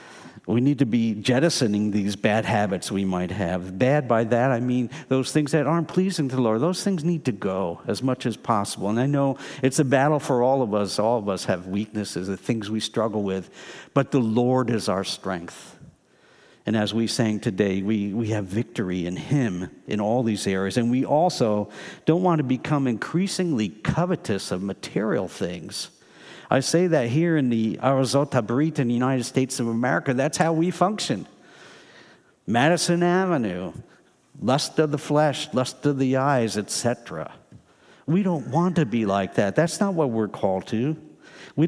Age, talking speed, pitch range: 50-69, 185 wpm, 105-155 Hz